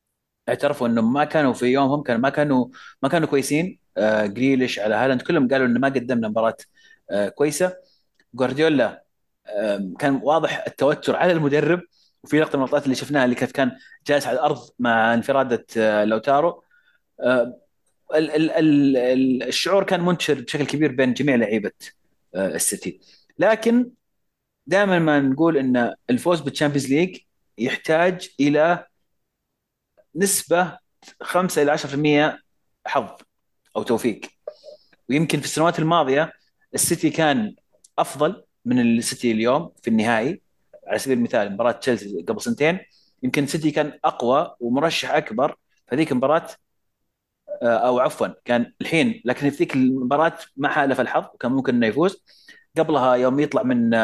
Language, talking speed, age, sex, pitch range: Arabic, 135 wpm, 30-49, male, 125-165 Hz